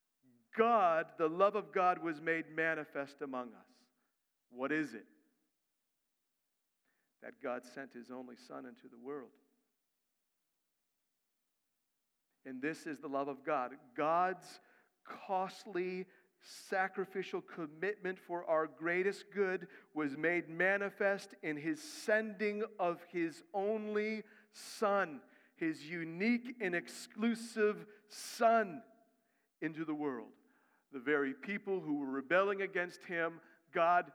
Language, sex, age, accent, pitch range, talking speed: English, male, 50-69, American, 155-215 Hz, 110 wpm